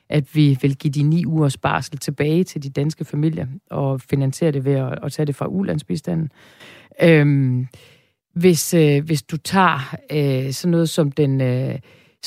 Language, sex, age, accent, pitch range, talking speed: Danish, female, 40-59, native, 140-170 Hz, 160 wpm